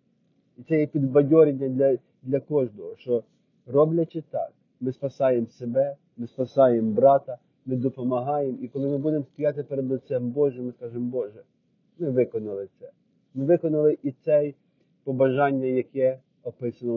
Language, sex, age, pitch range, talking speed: Ukrainian, male, 40-59, 120-145 Hz, 140 wpm